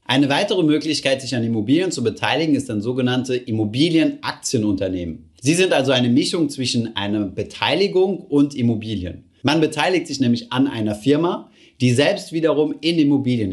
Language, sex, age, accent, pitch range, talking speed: German, male, 30-49, German, 115-150 Hz, 150 wpm